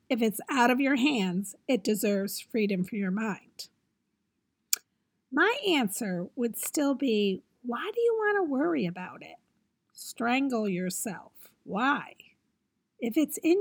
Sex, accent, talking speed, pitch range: female, American, 135 wpm, 205-290 Hz